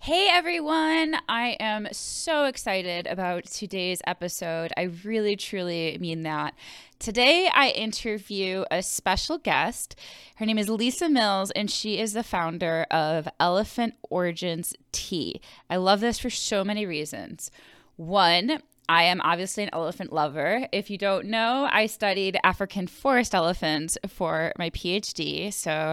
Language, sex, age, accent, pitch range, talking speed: English, female, 20-39, American, 170-220 Hz, 140 wpm